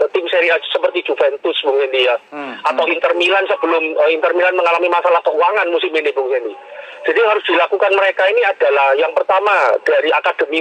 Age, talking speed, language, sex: 40-59, 165 wpm, Indonesian, male